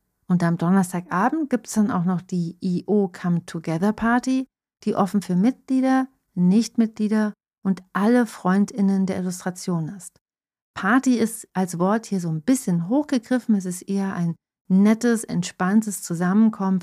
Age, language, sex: 40-59, German, female